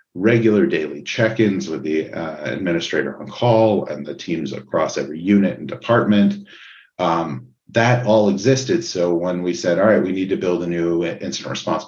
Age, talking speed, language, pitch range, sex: 40-59, 175 wpm, English, 85-110 Hz, male